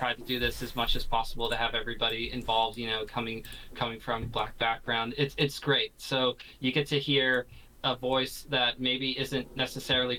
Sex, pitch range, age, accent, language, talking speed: male, 120-135 Hz, 20-39, American, English, 200 wpm